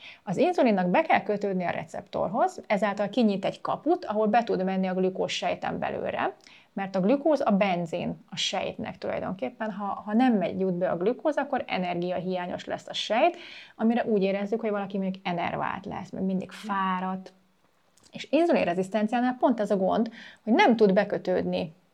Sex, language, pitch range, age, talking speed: female, Hungarian, 185-225 Hz, 30-49, 165 wpm